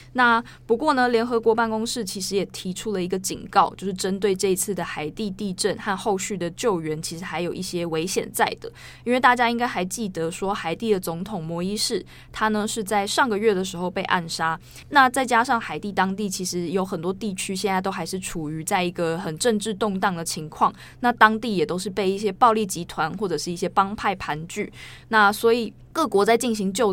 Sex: female